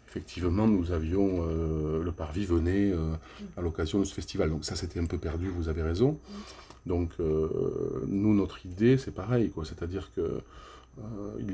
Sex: male